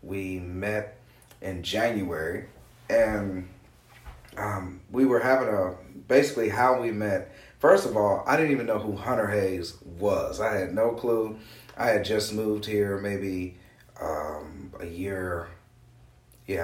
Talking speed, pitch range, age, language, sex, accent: 140 wpm, 95-125 Hz, 30-49, English, male, American